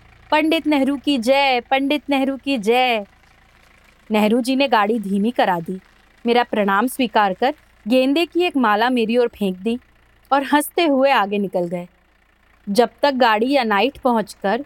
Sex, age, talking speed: female, 30-49, 160 wpm